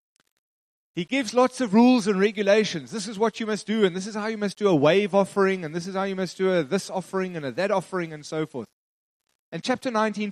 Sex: male